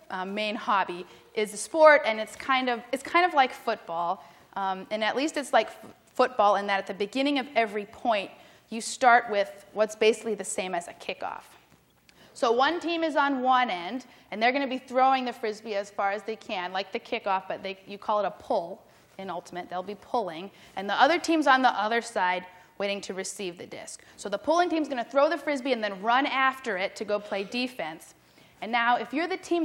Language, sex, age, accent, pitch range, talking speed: English, female, 30-49, American, 205-270 Hz, 230 wpm